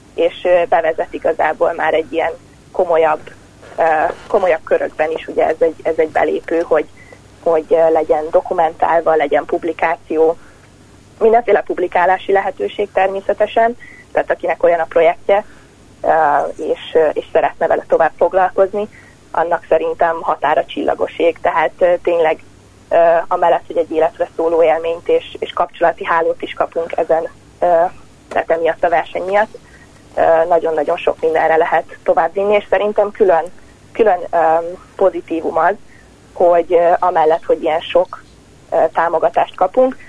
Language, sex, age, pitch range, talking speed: Hungarian, female, 30-49, 160-205 Hz, 120 wpm